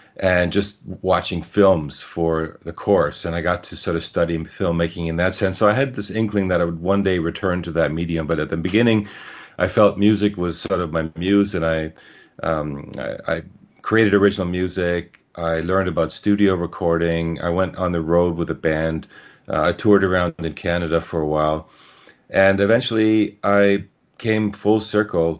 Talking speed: 190 wpm